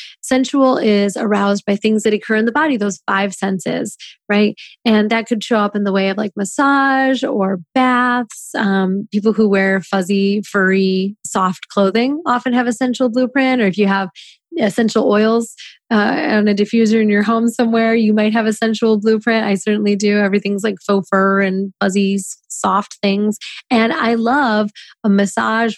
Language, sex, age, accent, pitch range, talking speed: English, female, 30-49, American, 200-235 Hz, 175 wpm